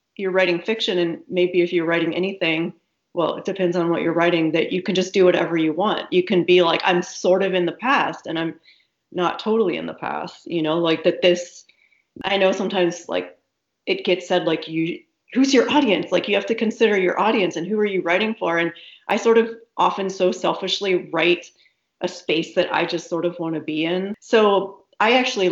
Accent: American